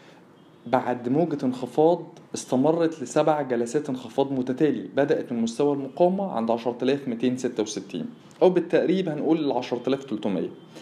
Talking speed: 100 wpm